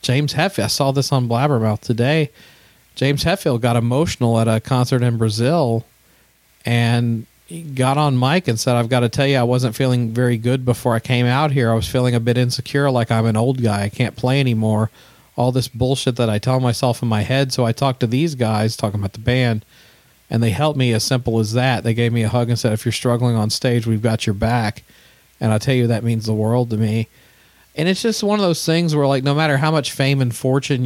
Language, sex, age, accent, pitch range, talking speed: English, male, 40-59, American, 110-130 Hz, 240 wpm